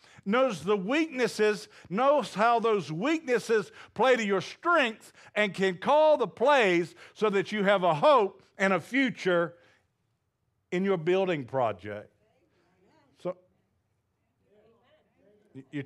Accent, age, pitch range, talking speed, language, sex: American, 50-69, 175-275 Hz, 115 wpm, English, male